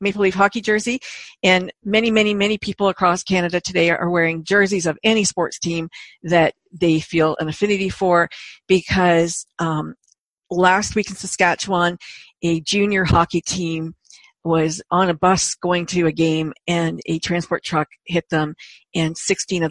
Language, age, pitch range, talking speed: English, 50-69, 165-190 Hz, 160 wpm